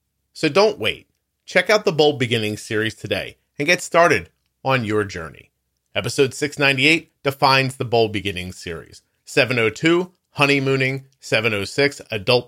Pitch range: 105-140 Hz